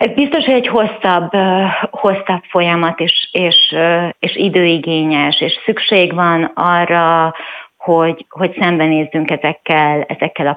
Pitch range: 155-180 Hz